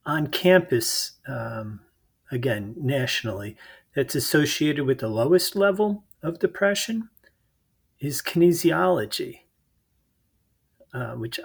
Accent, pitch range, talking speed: American, 115-170 Hz, 90 wpm